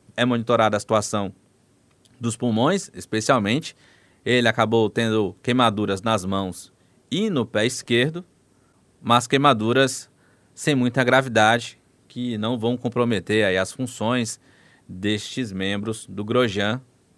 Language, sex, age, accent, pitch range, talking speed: Portuguese, male, 20-39, Brazilian, 105-135 Hz, 115 wpm